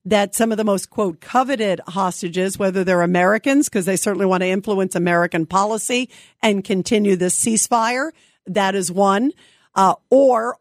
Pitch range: 190-245 Hz